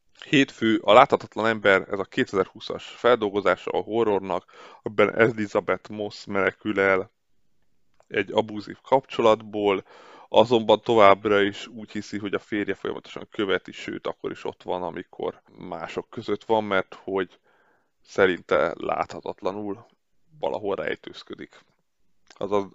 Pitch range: 100-110 Hz